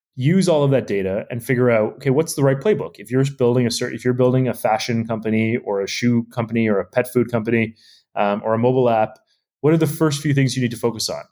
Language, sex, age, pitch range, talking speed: English, male, 30-49, 105-125 Hz, 260 wpm